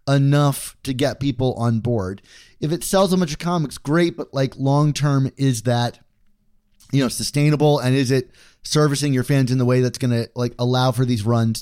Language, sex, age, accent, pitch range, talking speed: English, male, 30-49, American, 120-150 Hz, 205 wpm